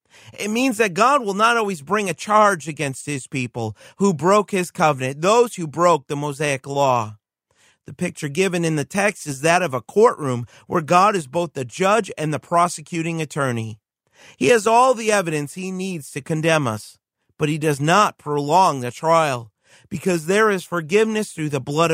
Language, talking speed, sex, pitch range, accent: English, 185 wpm, male, 140-195 Hz, American